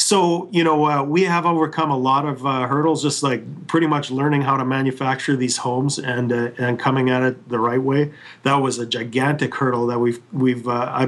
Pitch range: 125-155 Hz